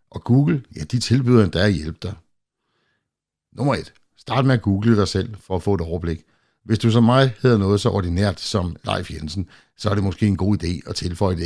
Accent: native